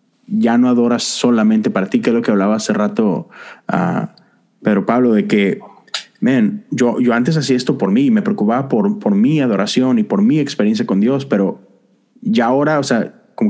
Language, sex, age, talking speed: Spanish, male, 30-49, 195 wpm